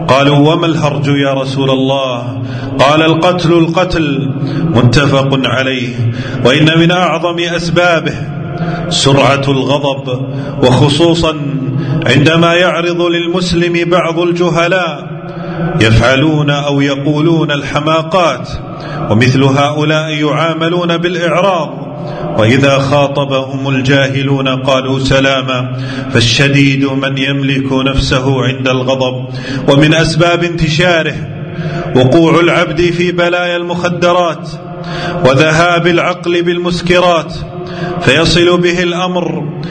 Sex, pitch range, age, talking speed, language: male, 135-175 Hz, 40-59, 85 wpm, Arabic